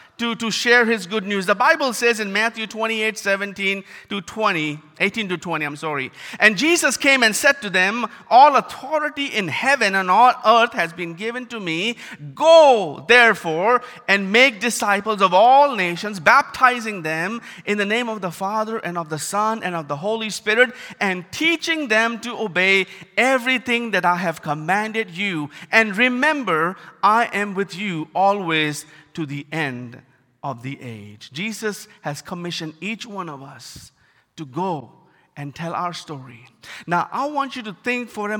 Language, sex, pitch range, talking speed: English, male, 165-235 Hz, 170 wpm